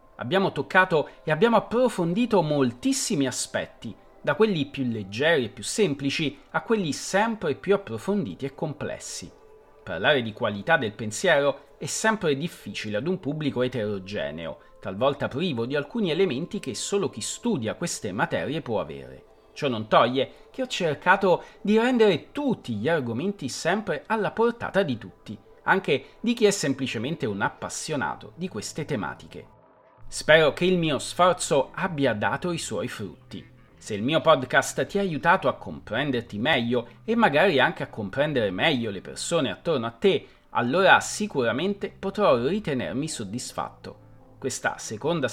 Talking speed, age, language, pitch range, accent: 145 wpm, 40-59, Italian, 130-205 Hz, native